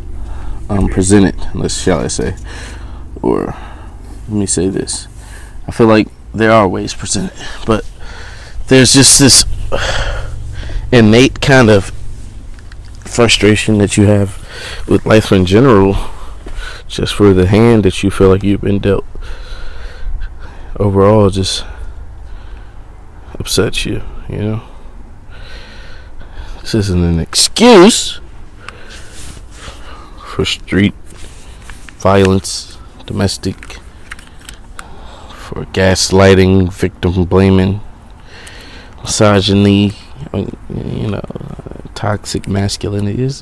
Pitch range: 85-105 Hz